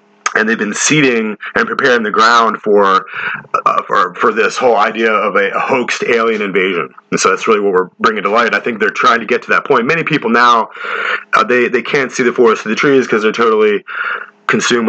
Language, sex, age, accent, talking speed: English, male, 30-49, American, 225 wpm